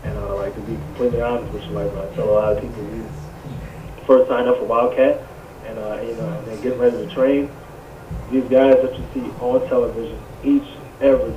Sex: male